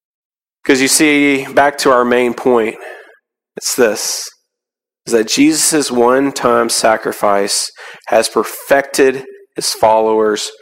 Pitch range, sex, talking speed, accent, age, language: 115-135 Hz, male, 105 wpm, American, 30-49, English